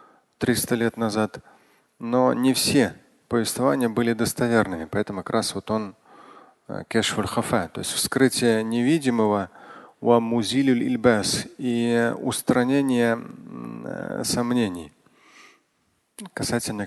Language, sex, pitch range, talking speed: Russian, male, 110-150 Hz, 85 wpm